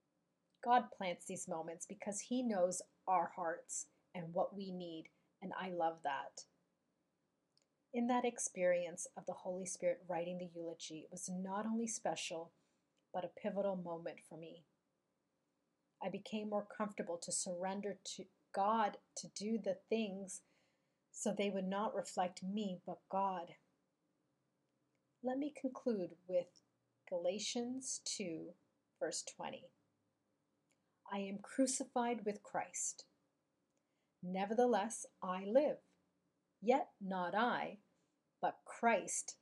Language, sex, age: English, female, 30-49